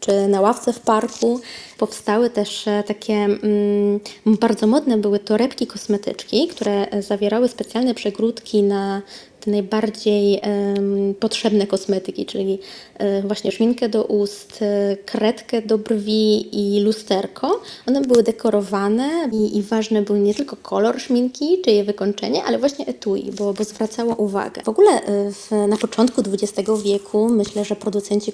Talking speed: 140 wpm